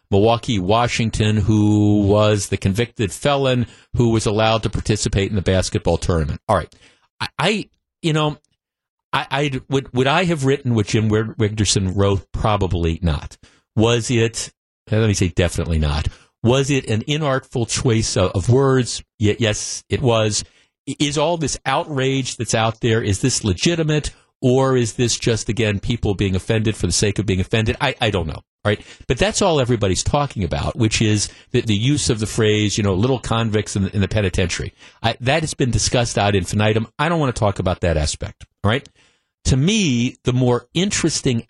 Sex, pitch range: male, 100-130 Hz